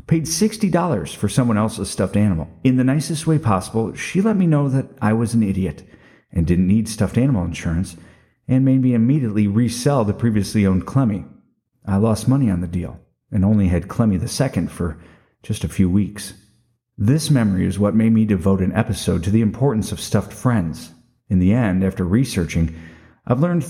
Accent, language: American, English